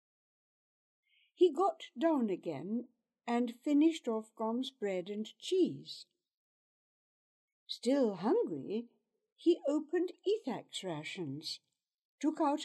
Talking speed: 90 wpm